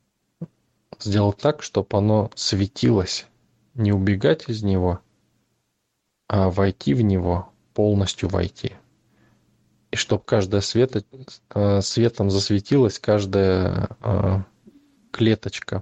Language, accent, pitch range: Russian, native, 95-110 Hz